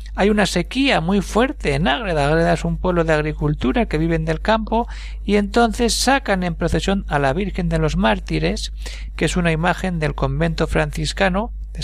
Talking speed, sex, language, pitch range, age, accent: 180 wpm, male, Spanish, 145-220 Hz, 60-79, Spanish